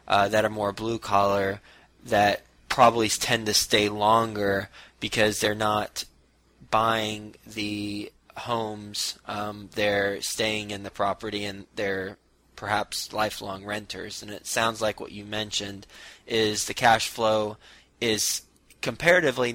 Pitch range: 105-115 Hz